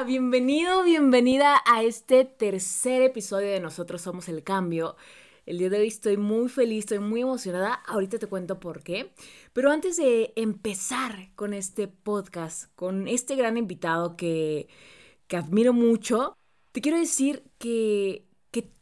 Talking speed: 145 wpm